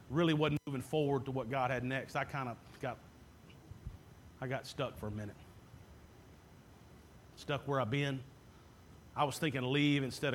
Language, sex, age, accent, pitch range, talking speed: English, male, 40-59, American, 125-180 Hz, 160 wpm